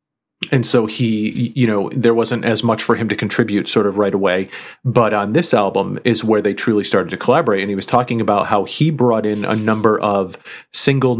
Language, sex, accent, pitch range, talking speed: English, male, American, 105-120 Hz, 220 wpm